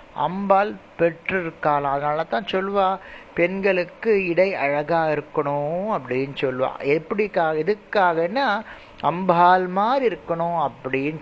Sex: male